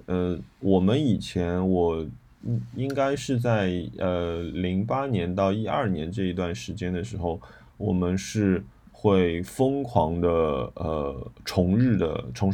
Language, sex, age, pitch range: Chinese, male, 20-39, 90-115 Hz